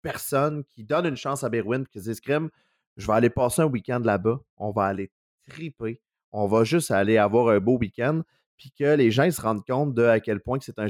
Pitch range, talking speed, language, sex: 105-130 Hz, 250 wpm, French, male